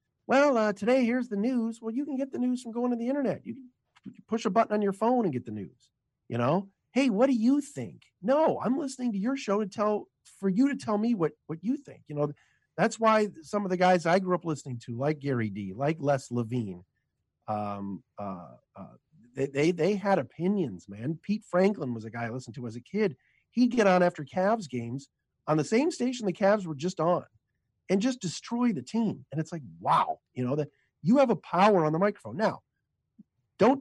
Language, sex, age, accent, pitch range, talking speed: English, male, 50-69, American, 140-220 Hz, 225 wpm